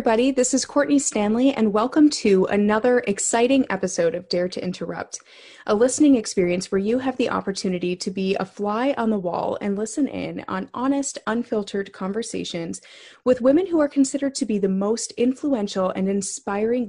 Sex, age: female, 20-39